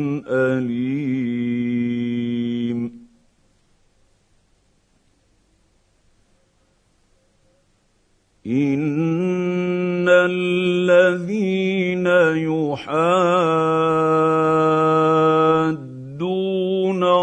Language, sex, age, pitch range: Arabic, male, 50-69, 120-190 Hz